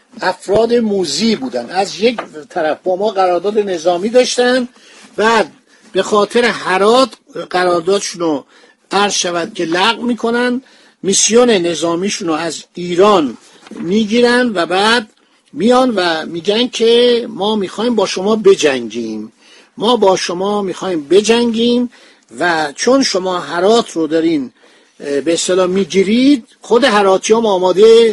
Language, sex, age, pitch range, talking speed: Persian, male, 50-69, 180-235 Hz, 125 wpm